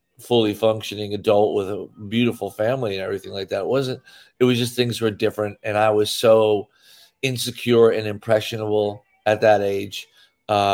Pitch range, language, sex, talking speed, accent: 105-120 Hz, English, male, 170 wpm, American